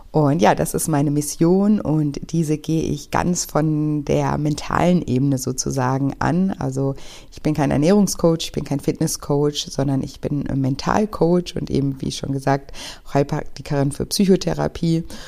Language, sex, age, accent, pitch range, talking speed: German, female, 60-79, German, 140-165 Hz, 150 wpm